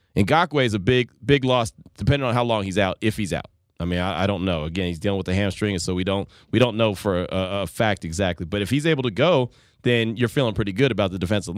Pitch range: 100-140 Hz